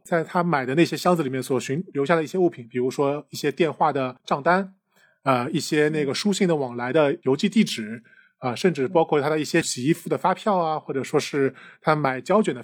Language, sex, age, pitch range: Chinese, male, 20-39, 130-175 Hz